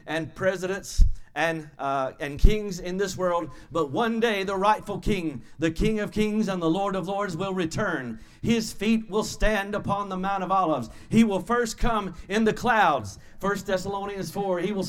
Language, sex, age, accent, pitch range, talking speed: English, male, 40-59, American, 165-215 Hz, 190 wpm